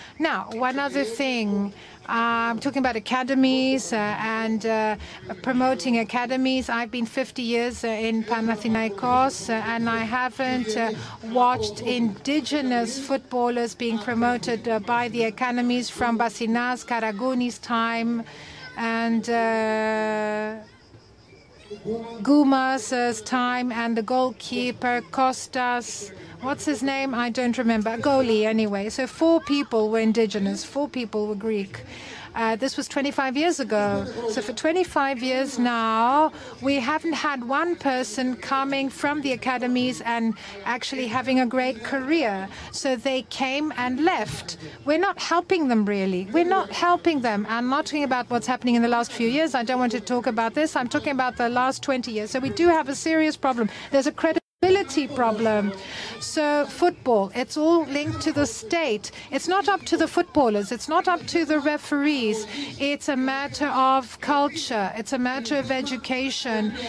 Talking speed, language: 155 wpm, Greek